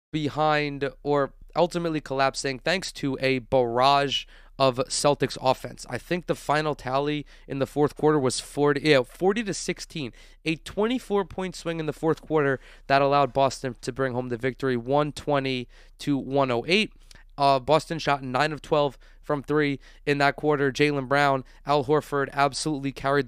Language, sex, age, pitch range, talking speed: English, male, 20-39, 130-155 Hz, 160 wpm